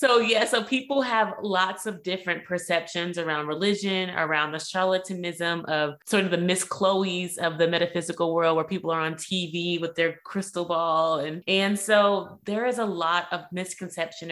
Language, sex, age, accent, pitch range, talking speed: English, female, 20-39, American, 155-180 Hz, 175 wpm